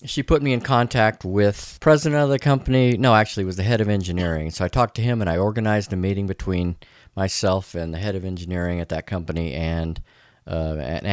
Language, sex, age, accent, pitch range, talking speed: English, male, 40-59, American, 90-120 Hz, 220 wpm